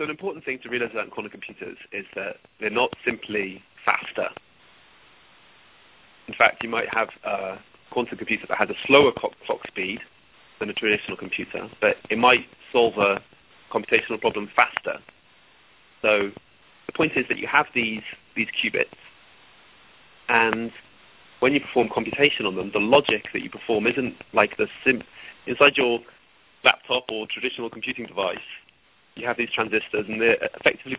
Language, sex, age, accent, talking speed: English, male, 30-49, British, 160 wpm